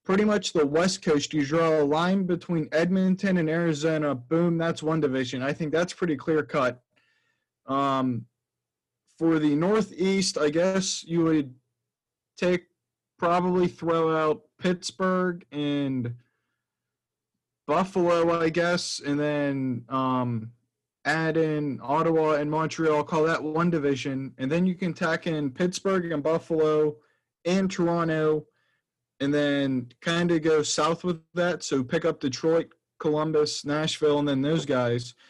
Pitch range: 135-165 Hz